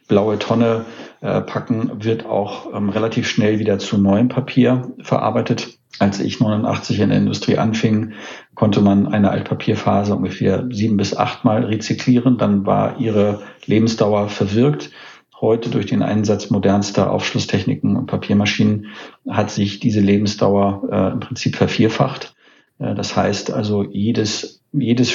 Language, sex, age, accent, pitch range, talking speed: German, male, 50-69, German, 100-115 Hz, 140 wpm